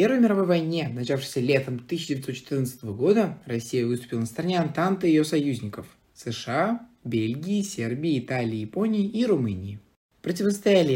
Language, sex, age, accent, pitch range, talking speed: Russian, male, 20-39, native, 120-180 Hz, 130 wpm